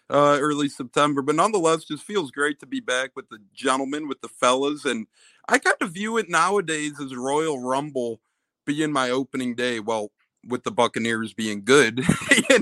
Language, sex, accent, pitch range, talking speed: English, male, American, 125-155 Hz, 180 wpm